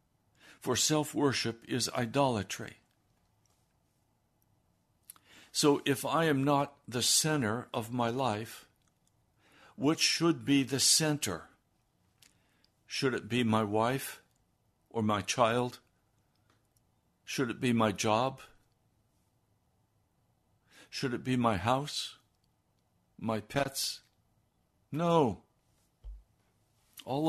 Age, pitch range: 60-79, 110-140 Hz